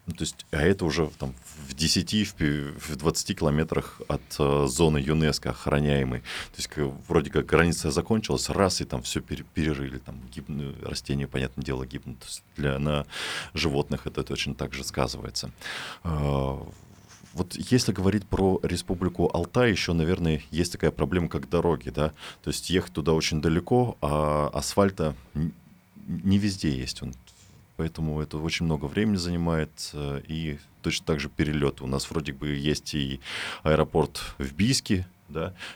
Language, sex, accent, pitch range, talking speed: Russian, male, native, 70-90 Hz, 145 wpm